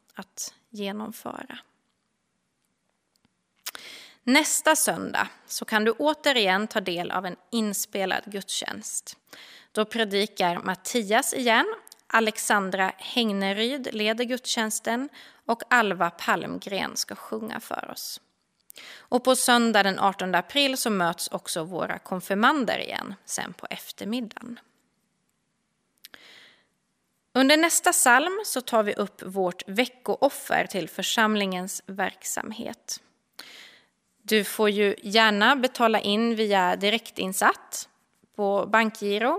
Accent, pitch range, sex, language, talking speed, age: native, 195-255 Hz, female, Swedish, 100 wpm, 30-49